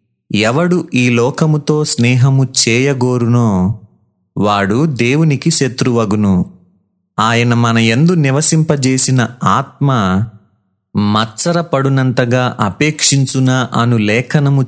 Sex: male